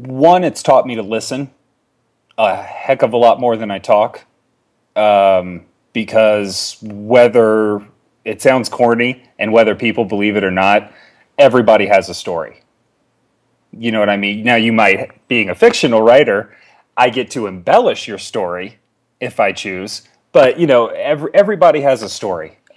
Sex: male